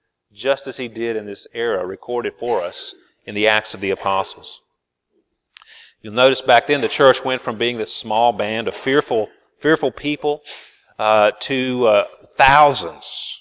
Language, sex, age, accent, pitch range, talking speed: English, male, 40-59, American, 110-145 Hz, 160 wpm